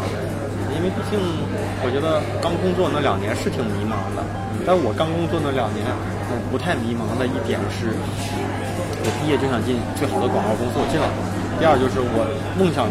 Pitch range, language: 100-125 Hz, Chinese